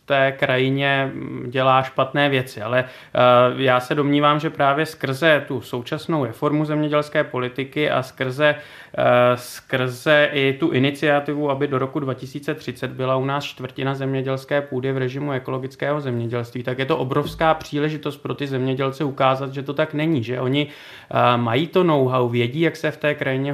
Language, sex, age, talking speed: Czech, male, 30-49, 155 wpm